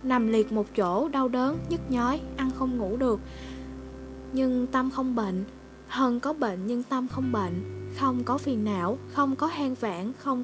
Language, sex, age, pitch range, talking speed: Vietnamese, female, 10-29, 200-260 Hz, 185 wpm